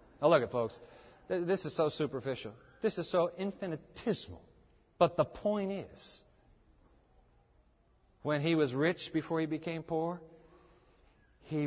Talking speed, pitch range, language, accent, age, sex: 130 wpm, 115-170 Hz, English, American, 50-69, male